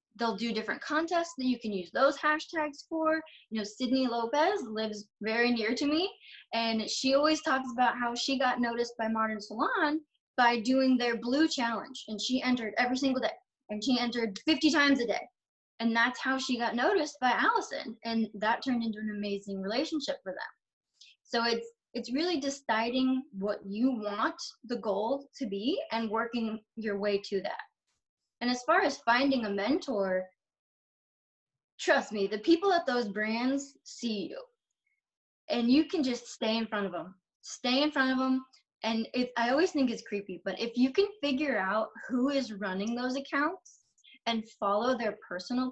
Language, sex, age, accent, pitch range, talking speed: English, female, 20-39, American, 220-280 Hz, 180 wpm